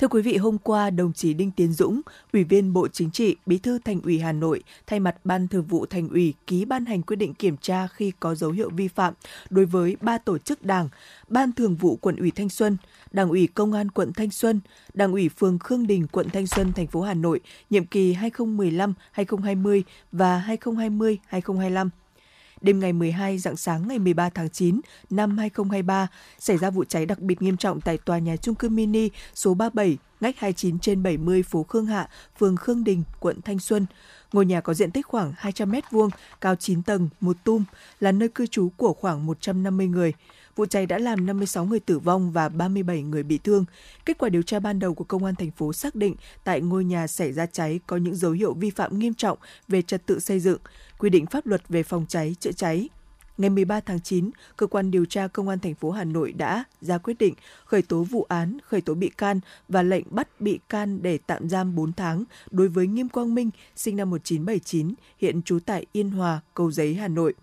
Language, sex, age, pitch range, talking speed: Vietnamese, female, 20-39, 175-210 Hz, 220 wpm